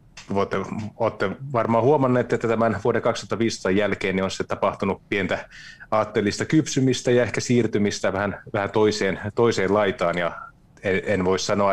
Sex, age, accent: male, 30-49, native